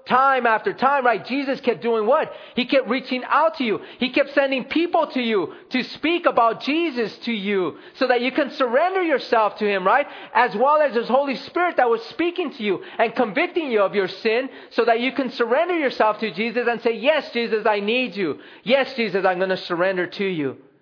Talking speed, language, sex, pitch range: 215 wpm, English, male, 200-270 Hz